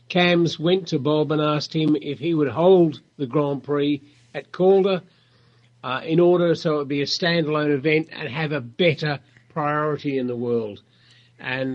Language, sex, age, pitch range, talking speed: English, male, 50-69, 135-160 Hz, 180 wpm